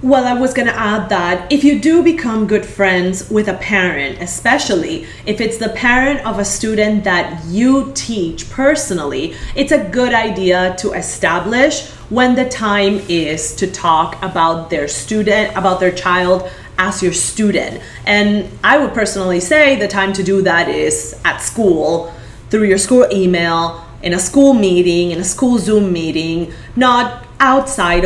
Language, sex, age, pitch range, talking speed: English, female, 30-49, 185-250 Hz, 165 wpm